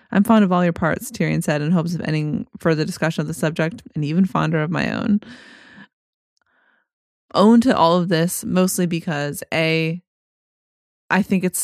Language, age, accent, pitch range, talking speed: English, 20-39, American, 160-205 Hz, 175 wpm